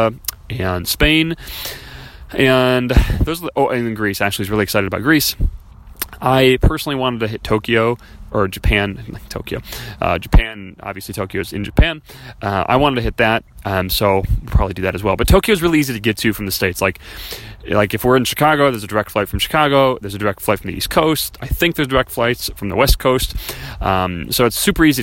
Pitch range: 95-125 Hz